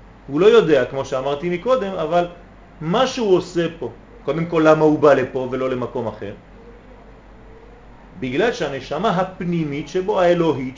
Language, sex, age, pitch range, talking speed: French, male, 40-59, 155-215 Hz, 140 wpm